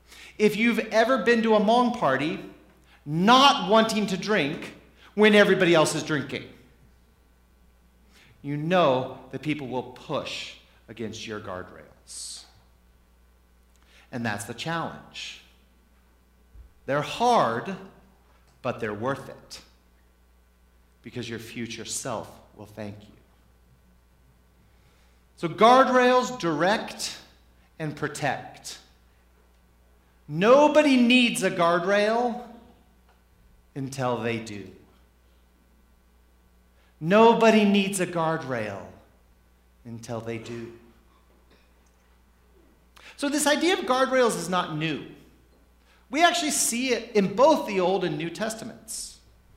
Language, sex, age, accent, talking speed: English, male, 50-69, American, 100 wpm